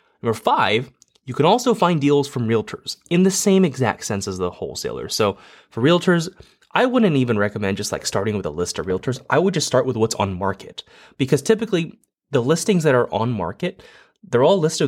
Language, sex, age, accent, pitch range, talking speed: English, male, 20-39, American, 110-160 Hz, 205 wpm